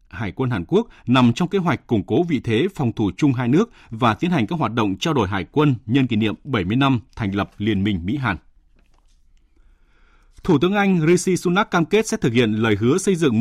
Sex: male